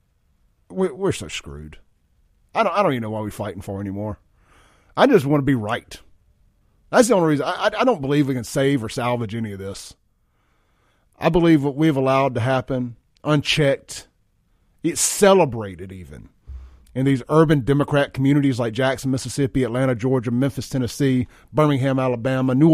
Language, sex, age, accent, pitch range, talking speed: English, male, 40-59, American, 105-145 Hz, 165 wpm